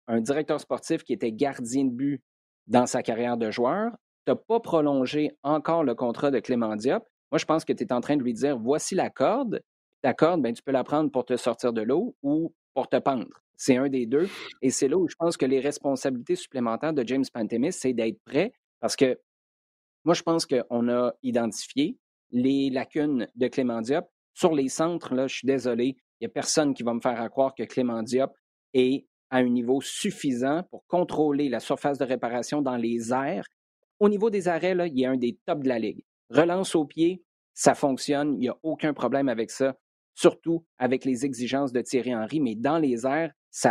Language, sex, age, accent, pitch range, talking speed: French, male, 30-49, Canadian, 125-155 Hz, 220 wpm